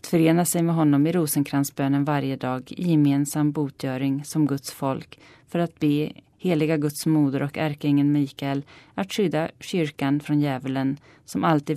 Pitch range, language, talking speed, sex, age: 140-165 Hz, Swedish, 160 wpm, female, 30-49